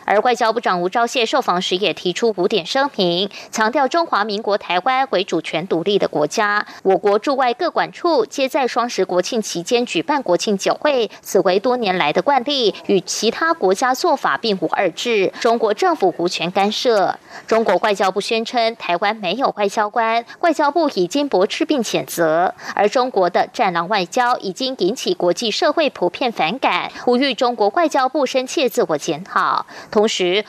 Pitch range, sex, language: 195-270 Hz, female, German